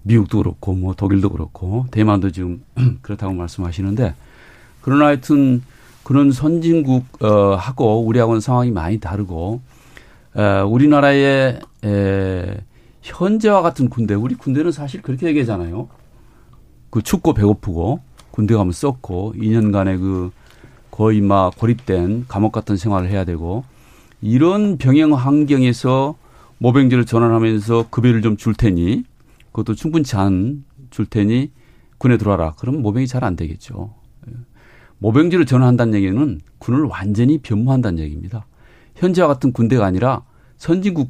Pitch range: 100-135 Hz